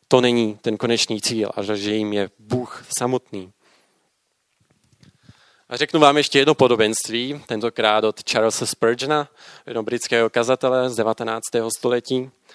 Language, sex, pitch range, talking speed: Czech, male, 115-145 Hz, 130 wpm